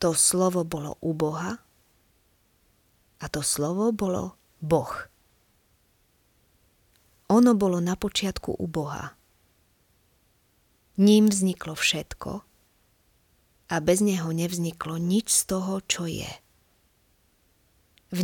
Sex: female